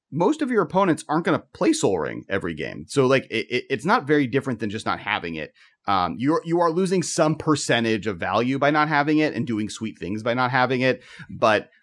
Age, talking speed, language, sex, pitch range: 30-49, 240 wpm, English, male, 110-145 Hz